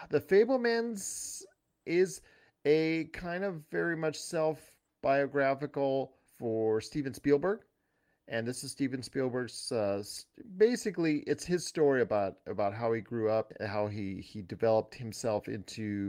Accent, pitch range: American, 110-145 Hz